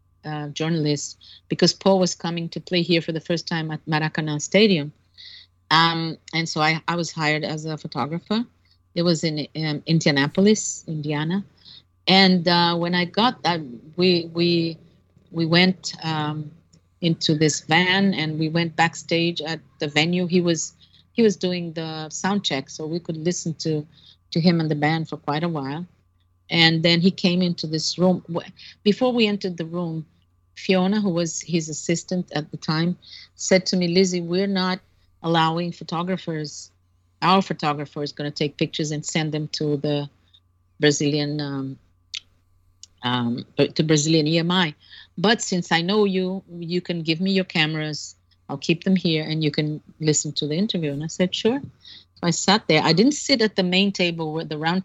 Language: English